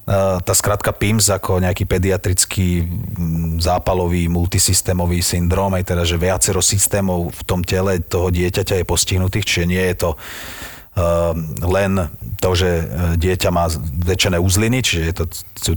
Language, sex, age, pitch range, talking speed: Slovak, male, 40-59, 90-100 Hz, 135 wpm